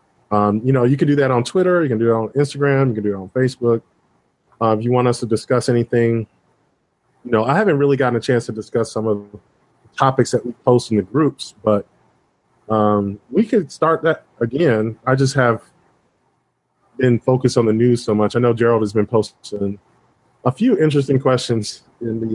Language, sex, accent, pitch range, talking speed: English, male, American, 110-130 Hz, 210 wpm